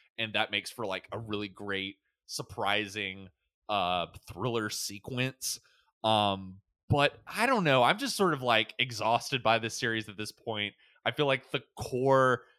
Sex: male